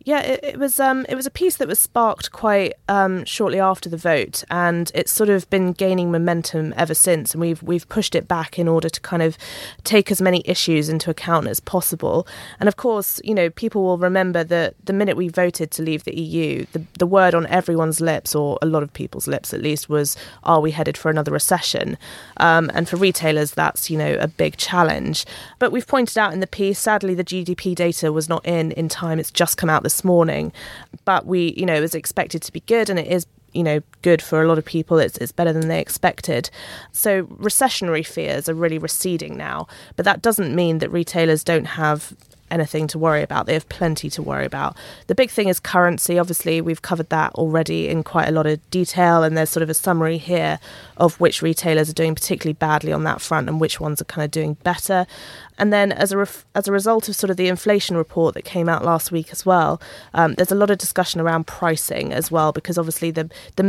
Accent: British